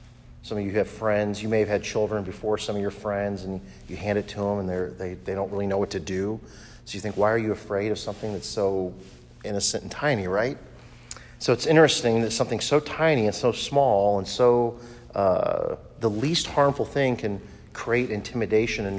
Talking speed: 210 wpm